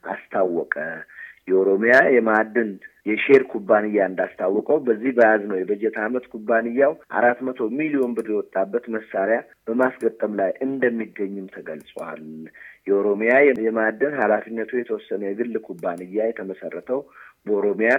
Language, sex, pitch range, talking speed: Amharic, male, 100-130 Hz, 115 wpm